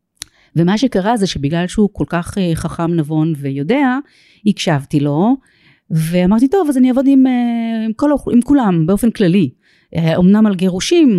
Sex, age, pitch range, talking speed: female, 30-49, 155-215 Hz, 140 wpm